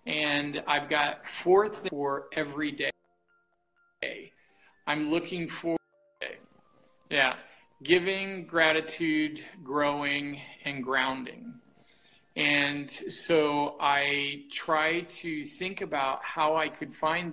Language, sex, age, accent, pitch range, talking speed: Telugu, male, 50-69, American, 135-165 Hz, 105 wpm